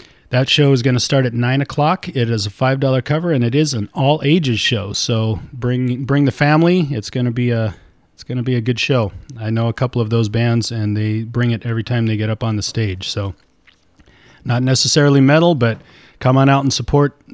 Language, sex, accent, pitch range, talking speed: English, male, American, 115-140 Hz, 230 wpm